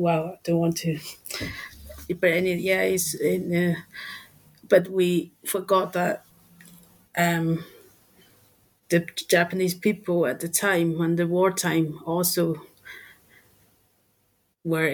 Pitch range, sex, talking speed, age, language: 155-175 Hz, female, 110 wpm, 30-49, English